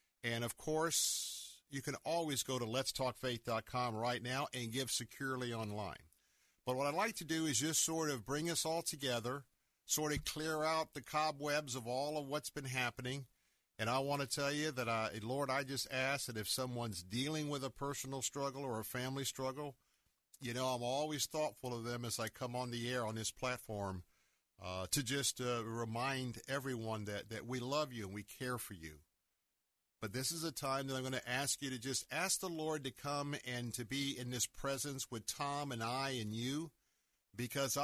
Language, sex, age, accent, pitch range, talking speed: English, male, 50-69, American, 110-140 Hz, 200 wpm